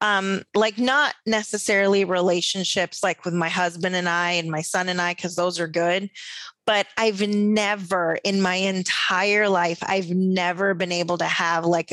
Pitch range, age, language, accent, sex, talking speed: 175-205 Hz, 20-39, English, American, female, 170 wpm